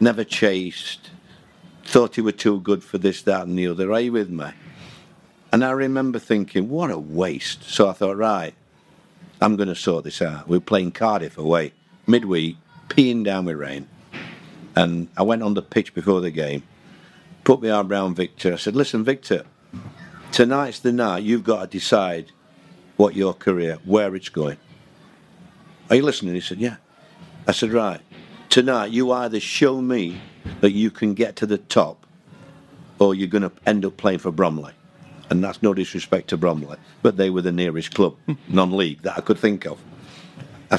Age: 50-69